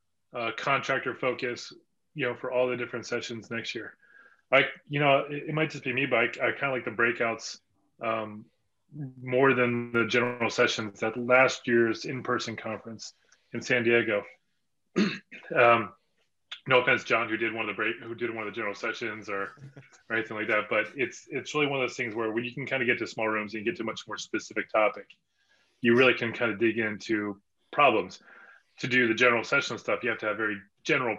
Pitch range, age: 110-130 Hz, 30-49